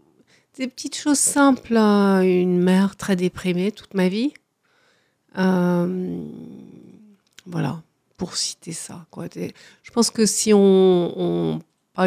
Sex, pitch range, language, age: female, 170-200 Hz, French, 50-69